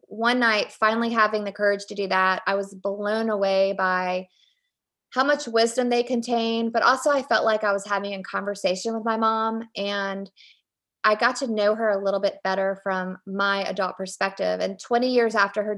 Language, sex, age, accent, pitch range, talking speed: English, female, 20-39, American, 195-215 Hz, 195 wpm